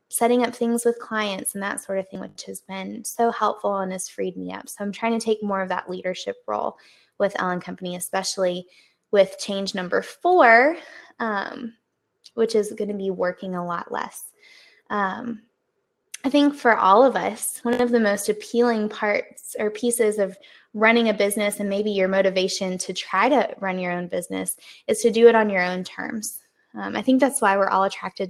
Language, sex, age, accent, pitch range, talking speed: English, female, 20-39, American, 195-235 Hz, 200 wpm